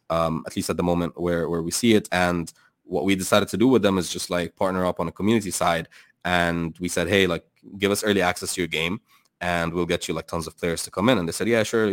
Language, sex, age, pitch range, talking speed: English, male, 20-39, 85-95 Hz, 280 wpm